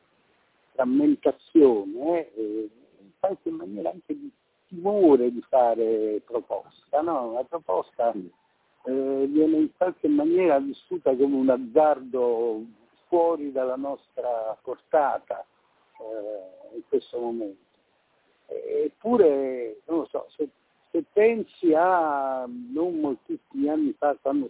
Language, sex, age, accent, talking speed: Italian, male, 60-79, native, 110 wpm